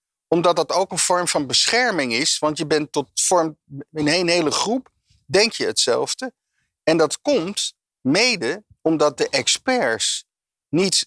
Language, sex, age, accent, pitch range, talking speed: Dutch, male, 50-69, Dutch, 120-175 Hz, 150 wpm